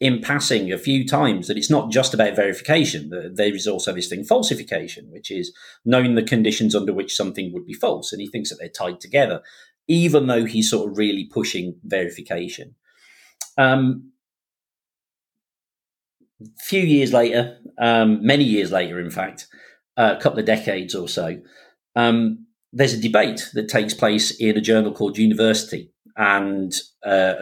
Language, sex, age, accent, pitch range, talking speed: English, male, 40-59, British, 105-125 Hz, 160 wpm